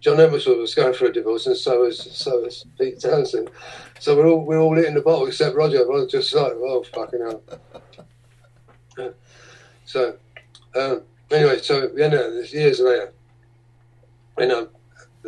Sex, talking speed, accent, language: male, 160 wpm, British, English